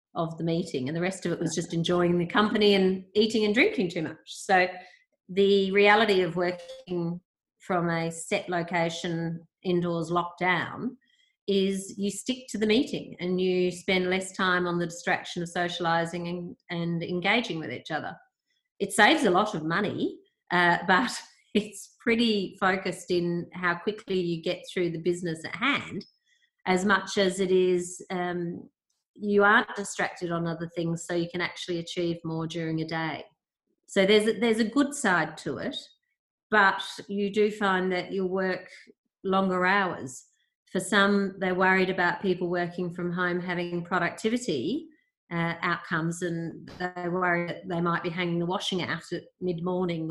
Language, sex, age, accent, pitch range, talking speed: English, female, 30-49, Australian, 175-205 Hz, 165 wpm